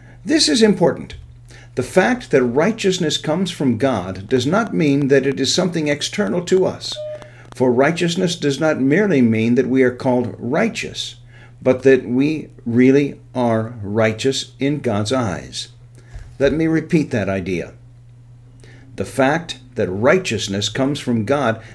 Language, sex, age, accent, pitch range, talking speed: English, male, 50-69, American, 120-145 Hz, 145 wpm